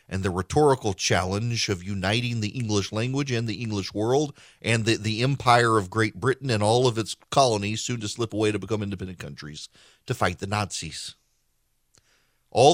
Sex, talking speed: male, 180 wpm